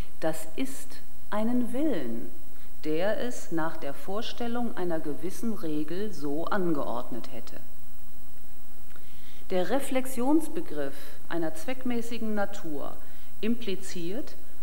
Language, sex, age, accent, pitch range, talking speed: German, female, 40-59, German, 160-225 Hz, 85 wpm